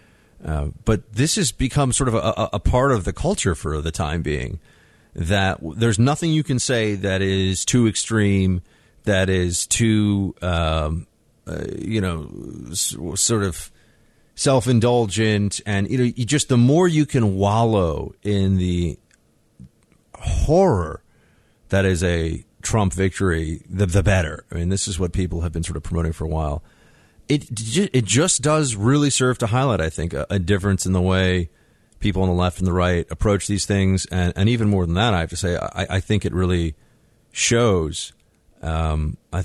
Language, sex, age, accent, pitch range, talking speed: English, male, 40-59, American, 85-110 Hz, 180 wpm